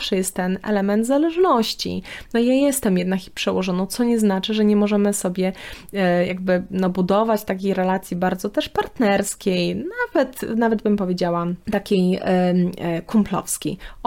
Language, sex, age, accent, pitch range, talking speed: Polish, female, 20-39, native, 185-215 Hz, 130 wpm